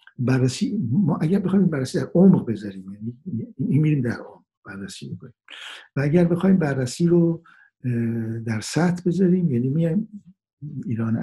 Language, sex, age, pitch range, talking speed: Persian, male, 60-79, 115-165 Hz, 150 wpm